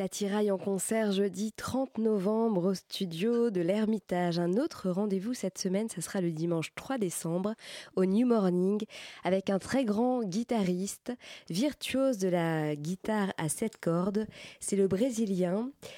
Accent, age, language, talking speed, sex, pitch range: French, 20-39, French, 150 wpm, female, 170-210 Hz